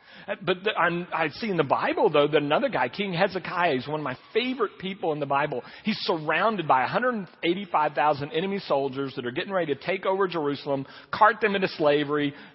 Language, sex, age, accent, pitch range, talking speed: English, male, 40-59, American, 150-230 Hz, 185 wpm